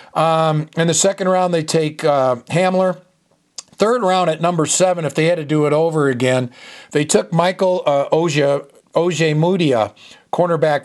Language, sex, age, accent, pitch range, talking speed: English, male, 50-69, American, 140-170 Hz, 170 wpm